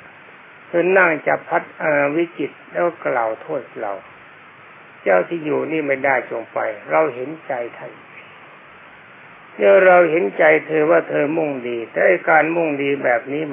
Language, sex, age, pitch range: Thai, male, 60-79, 130-165 Hz